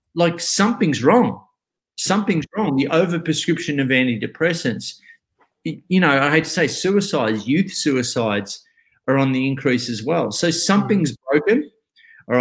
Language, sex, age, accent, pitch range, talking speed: English, male, 30-49, Australian, 130-165 Hz, 135 wpm